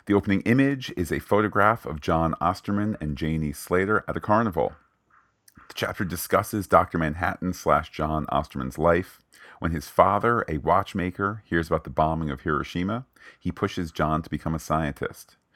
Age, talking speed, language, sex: 40-59, 160 wpm, English, male